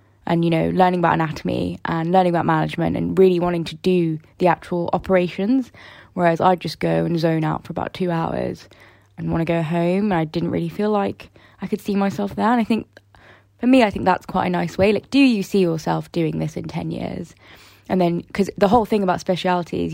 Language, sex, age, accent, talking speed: English, female, 20-39, British, 230 wpm